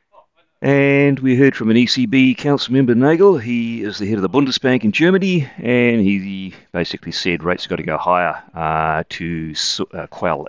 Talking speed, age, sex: 175 wpm, 40-59, male